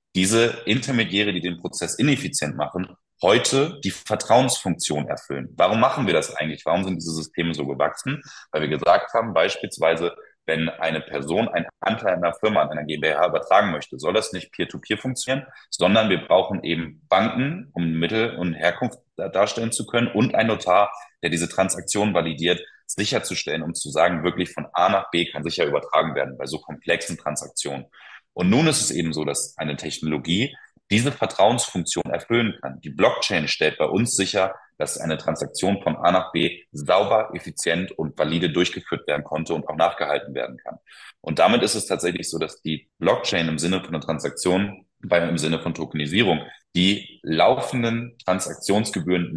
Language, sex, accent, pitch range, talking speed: German, male, German, 80-110 Hz, 170 wpm